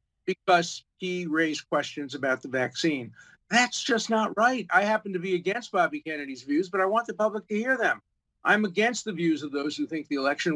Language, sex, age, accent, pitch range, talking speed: English, male, 50-69, American, 155-205 Hz, 210 wpm